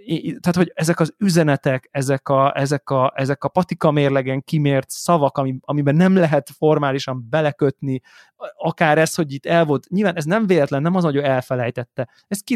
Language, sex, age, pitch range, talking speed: Hungarian, male, 20-39, 130-160 Hz, 175 wpm